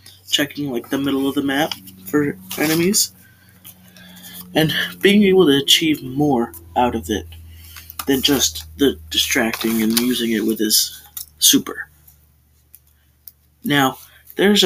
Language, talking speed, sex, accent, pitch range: English, 125 wpm, male, American, 115-145 Hz